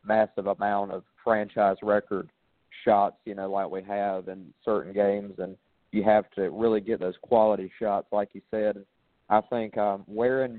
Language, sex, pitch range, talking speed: English, male, 100-115 Hz, 170 wpm